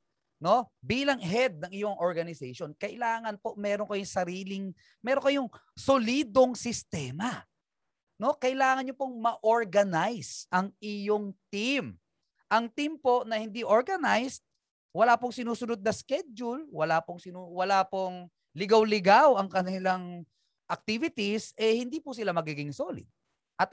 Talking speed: 125 wpm